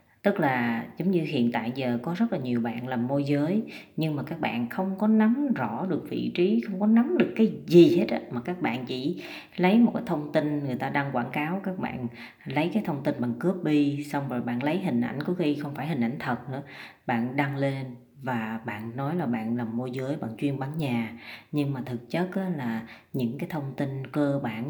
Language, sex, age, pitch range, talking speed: Vietnamese, female, 20-39, 120-170 Hz, 235 wpm